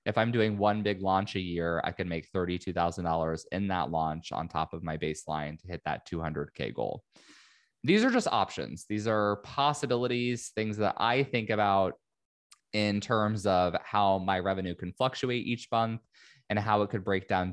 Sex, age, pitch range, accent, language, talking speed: male, 20-39, 90-120 Hz, American, English, 180 wpm